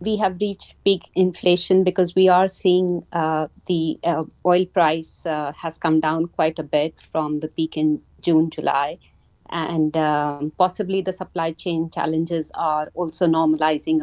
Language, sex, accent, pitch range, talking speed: English, female, Indian, 155-180 Hz, 160 wpm